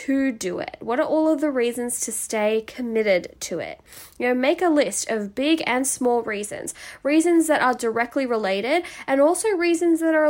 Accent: Australian